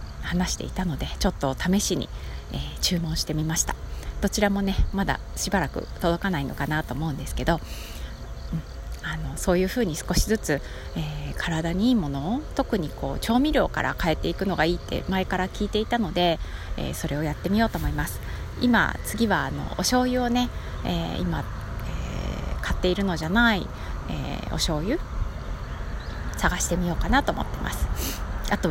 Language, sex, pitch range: Japanese, female, 130-195 Hz